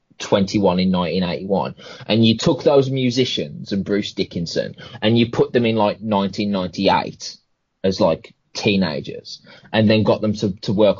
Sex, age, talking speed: male, 20-39, 155 wpm